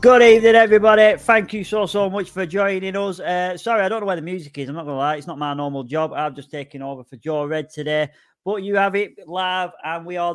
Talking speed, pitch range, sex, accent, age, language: 265 wpm, 135-170 Hz, male, British, 30-49, English